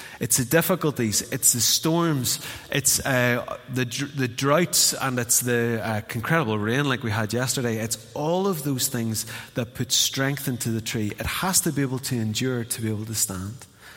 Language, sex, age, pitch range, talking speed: English, male, 30-49, 120-160 Hz, 190 wpm